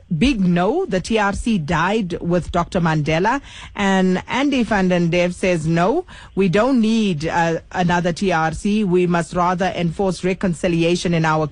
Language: English